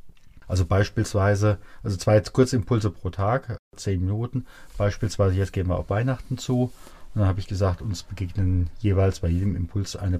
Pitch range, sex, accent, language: 90-115 Hz, male, German, German